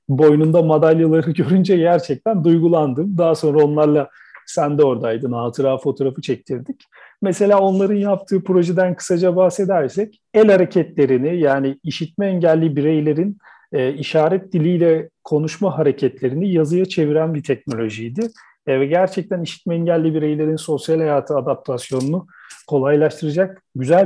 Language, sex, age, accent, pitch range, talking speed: Turkish, male, 40-59, native, 140-190 Hz, 110 wpm